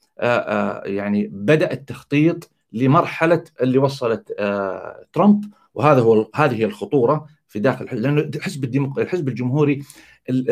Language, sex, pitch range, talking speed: Arabic, male, 120-170 Hz, 110 wpm